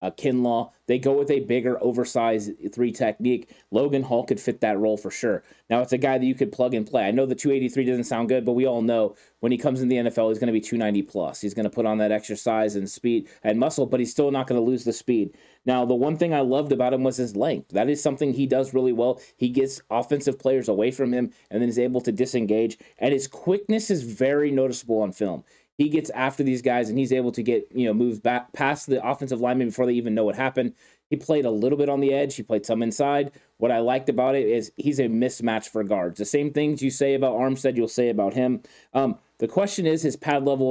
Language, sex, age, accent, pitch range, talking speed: English, male, 20-39, American, 115-135 Hz, 255 wpm